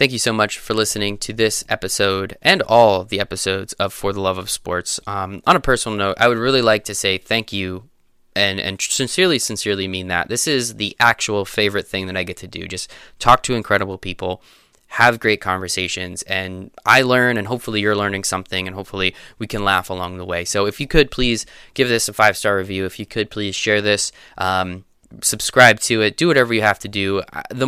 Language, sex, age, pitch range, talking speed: English, male, 20-39, 95-115 Hz, 215 wpm